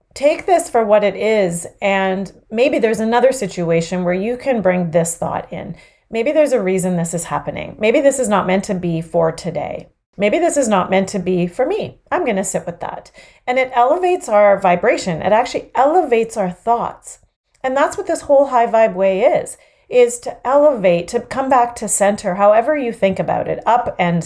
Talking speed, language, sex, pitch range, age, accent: 205 wpm, English, female, 180-240 Hz, 30-49, American